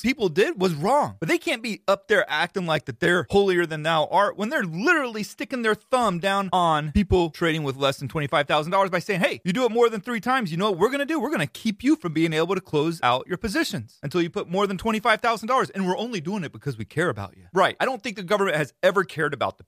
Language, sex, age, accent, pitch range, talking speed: English, male, 30-49, American, 145-205 Hz, 270 wpm